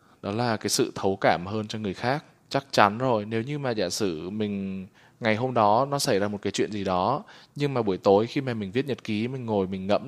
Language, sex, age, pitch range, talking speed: Vietnamese, male, 20-39, 100-125 Hz, 260 wpm